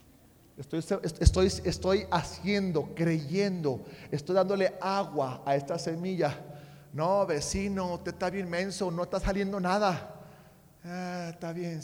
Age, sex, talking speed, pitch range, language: 40-59, male, 120 wpm, 160-205 Hz, Spanish